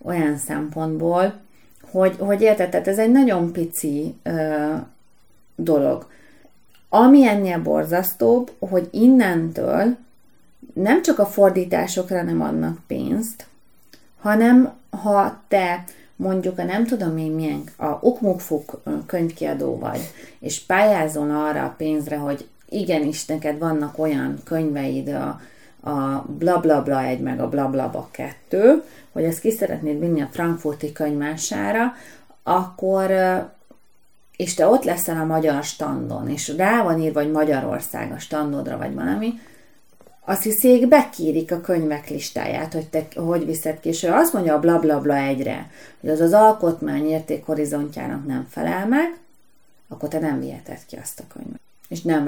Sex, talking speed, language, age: female, 140 wpm, Hungarian, 30-49